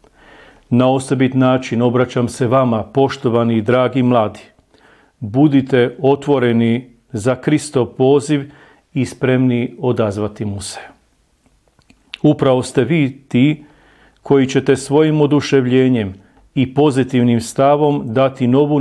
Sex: male